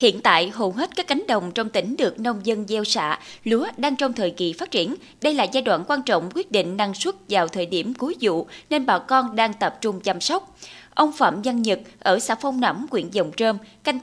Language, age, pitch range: Vietnamese, 20-39, 200-275 Hz